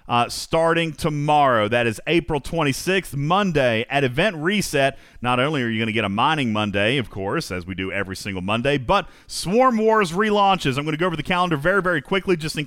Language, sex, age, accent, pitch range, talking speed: English, male, 40-59, American, 120-175 Hz, 215 wpm